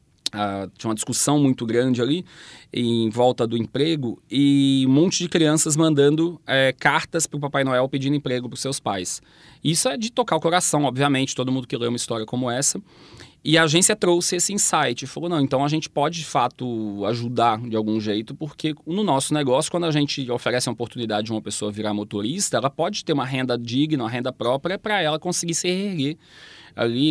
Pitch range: 120-160 Hz